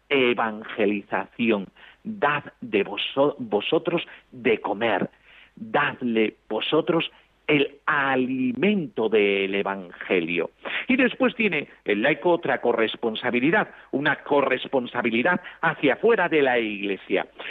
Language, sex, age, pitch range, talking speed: Spanish, male, 50-69, 120-185 Hz, 90 wpm